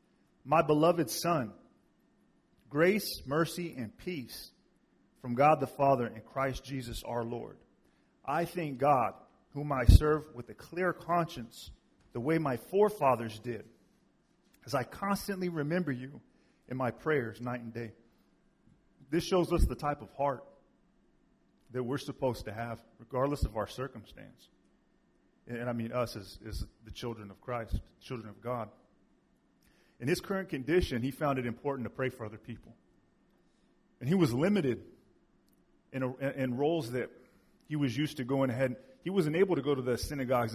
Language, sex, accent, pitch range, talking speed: English, male, American, 115-150 Hz, 155 wpm